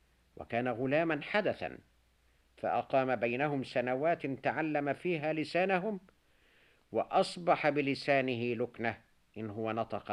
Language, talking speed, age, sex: Arabic, 90 wpm, 50-69, male